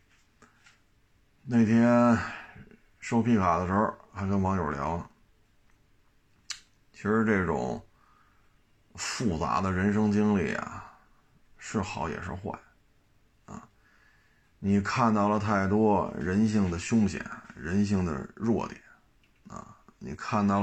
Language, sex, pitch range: Chinese, male, 95-110 Hz